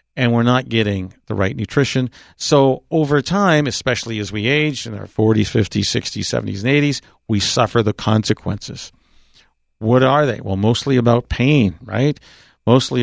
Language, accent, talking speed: English, American, 160 wpm